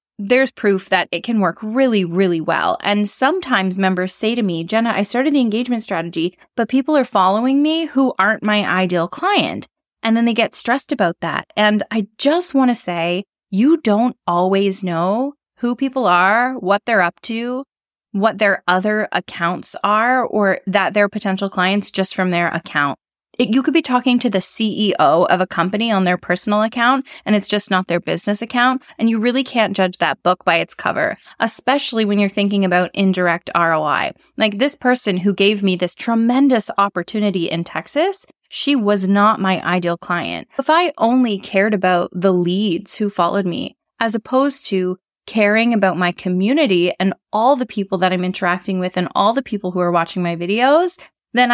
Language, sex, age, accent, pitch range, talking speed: English, female, 20-39, American, 180-240 Hz, 185 wpm